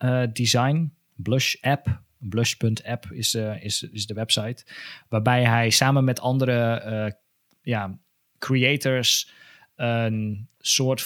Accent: Dutch